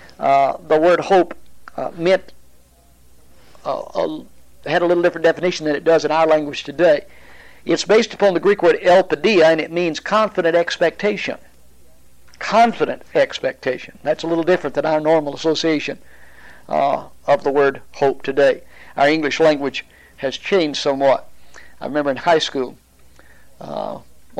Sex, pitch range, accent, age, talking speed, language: male, 125-175 Hz, American, 60-79, 145 wpm, English